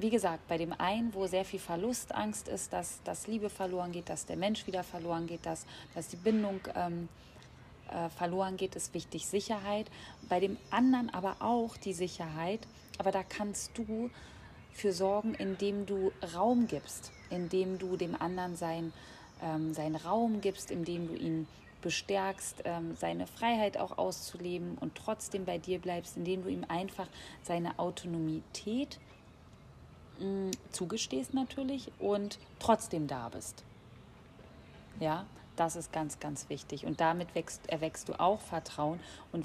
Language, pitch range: German, 160-195 Hz